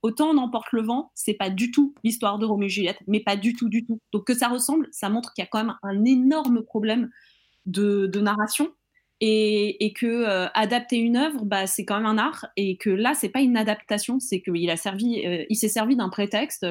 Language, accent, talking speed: French, French, 225 wpm